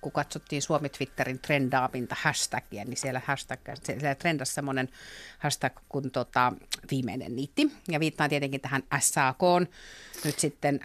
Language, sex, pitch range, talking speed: Finnish, female, 135-170 Hz, 125 wpm